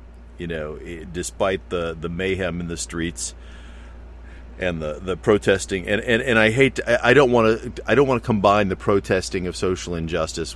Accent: American